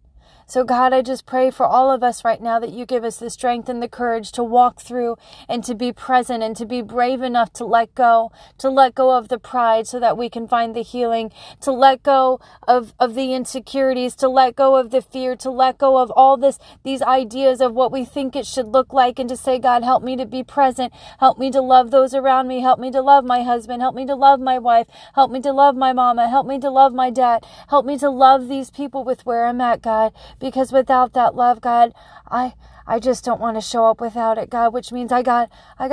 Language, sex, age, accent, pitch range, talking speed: English, female, 30-49, American, 230-260 Hz, 250 wpm